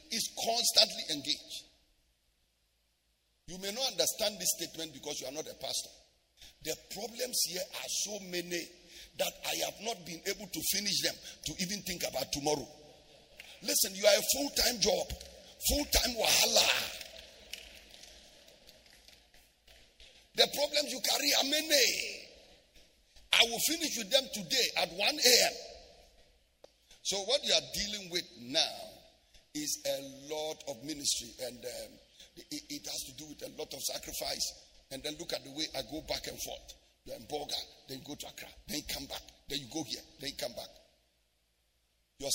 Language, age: English, 50-69